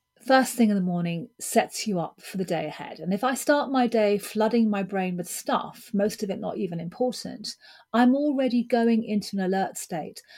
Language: English